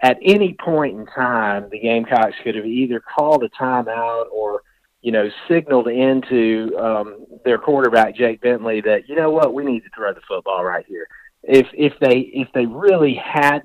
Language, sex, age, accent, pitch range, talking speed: English, male, 40-59, American, 110-140 Hz, 185 wpm